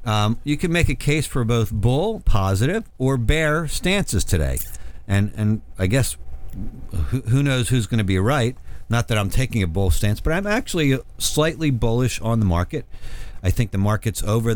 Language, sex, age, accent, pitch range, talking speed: English, male, 50-69, American, 95-120 Hz, 190 wpm